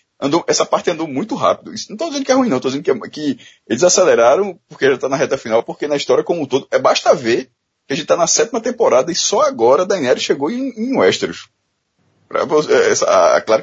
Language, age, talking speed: Portuguese, 20-39, 225 wpm